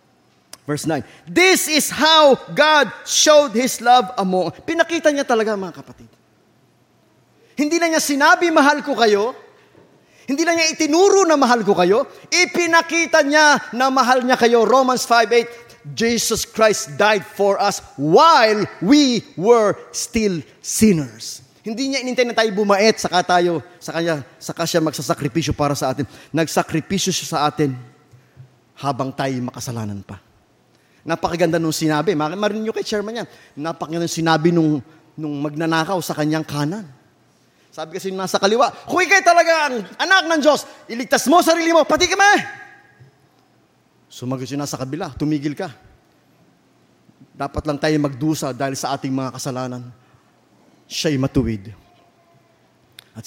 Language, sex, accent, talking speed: English, male, Filipino, 140 wpm